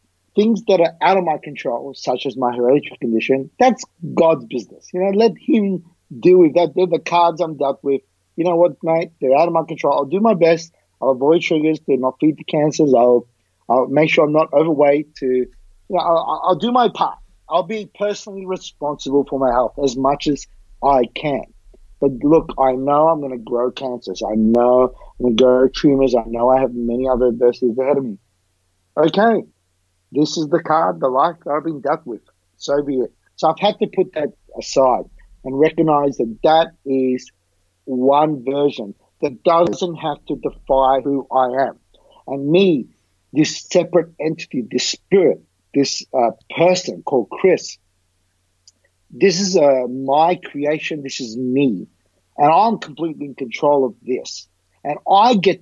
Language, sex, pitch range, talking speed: English, male, 125-170 Hz, 180 wpm